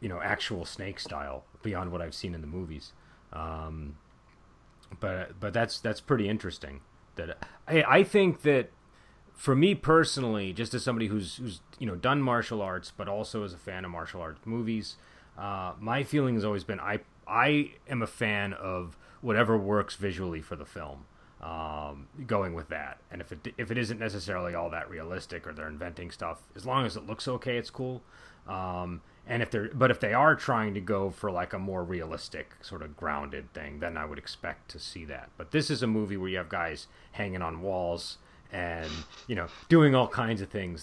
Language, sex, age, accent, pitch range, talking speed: English, male, 30-49, American, 85-115 Hz, 200 wpm